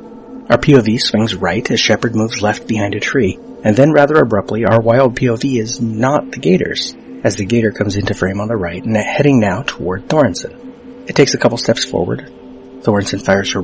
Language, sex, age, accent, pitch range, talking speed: English, male, 30-49, American, 100-130 Hz, 200 wpm